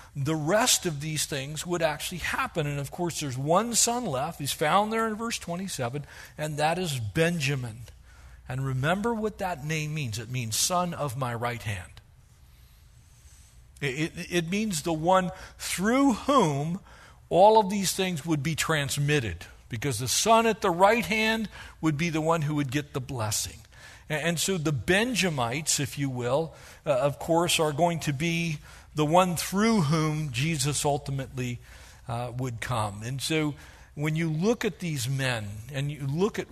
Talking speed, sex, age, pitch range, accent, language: 170 wpm, male, 50-69, 130-175 Hz, American, English